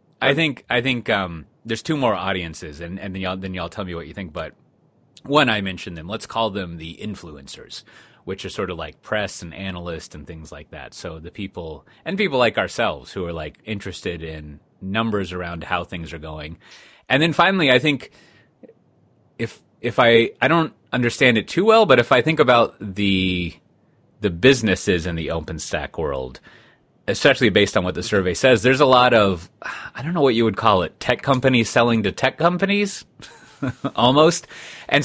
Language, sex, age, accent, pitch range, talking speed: English, male, 30-49, American, 85-120 Hz, 195 wpm